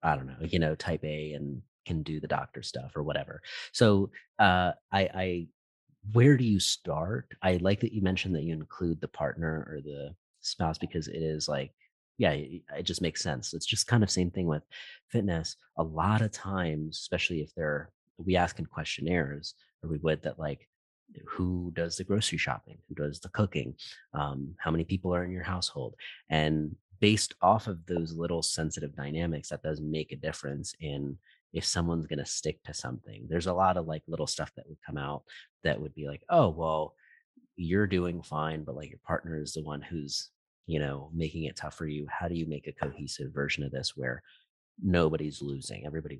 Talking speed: 200 wpm